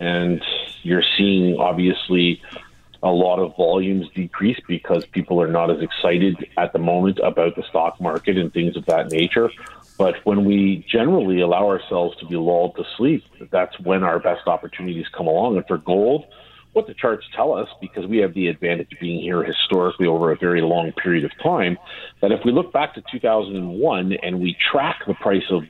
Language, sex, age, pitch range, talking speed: English, male, 40-59, 90-105 Hz, 190 wpm